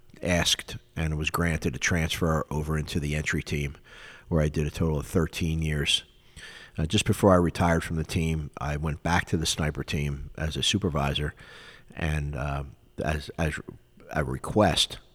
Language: English